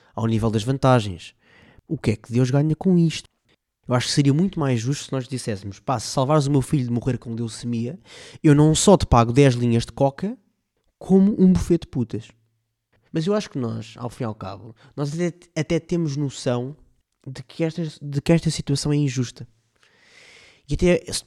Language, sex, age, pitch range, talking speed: Portuguese, male, 20-39, 115-150 Hz, 205 wpm